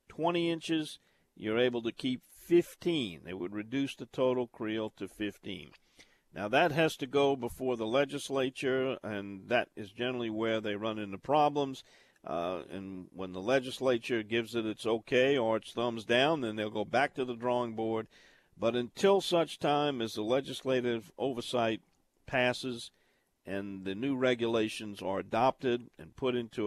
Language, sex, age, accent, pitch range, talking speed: English, male, 50-69, American, 110-135 Hz, 160 wpm